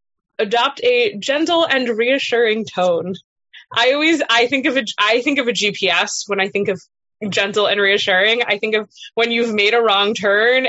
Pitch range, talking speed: 200-260 Hz, 185 wpm